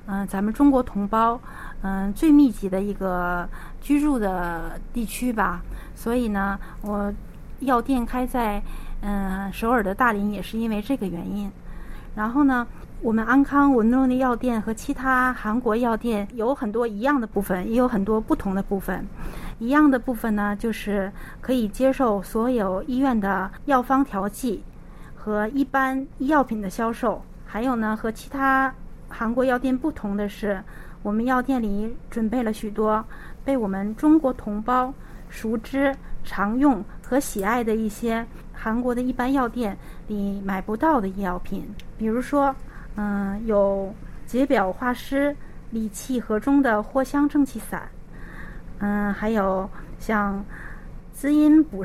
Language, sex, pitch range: Chinese, female, 205-260 Hz